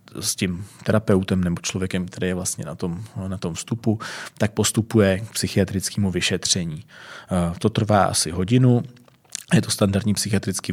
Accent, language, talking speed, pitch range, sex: native, Czech, 145 wpm, 90-105 Hz, male